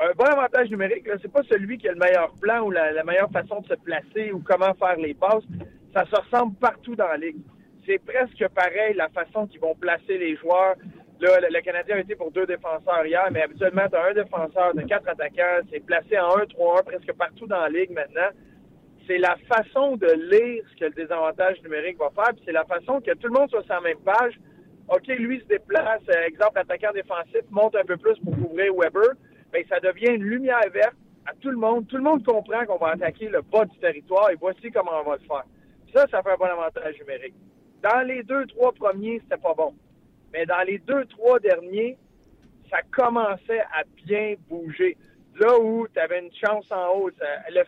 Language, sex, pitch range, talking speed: French, male, 175-235 Hz, 220 wpm